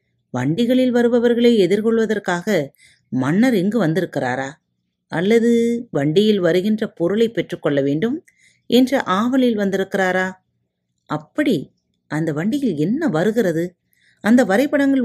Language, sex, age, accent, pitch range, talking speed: Tamil, female, 30-49, native, 150-235 Hz, 90 wpm